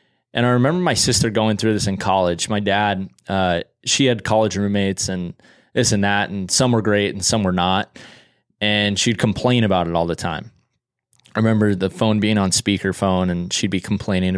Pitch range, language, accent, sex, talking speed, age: 95-115 Hz, English, American, male, 200 wpm, 20-39